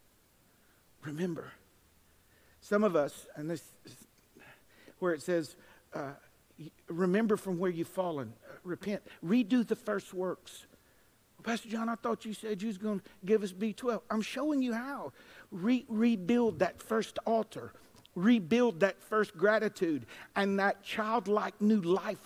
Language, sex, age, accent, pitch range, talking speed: English, male, 50-69, American, 165-225 Hz, 135 wpm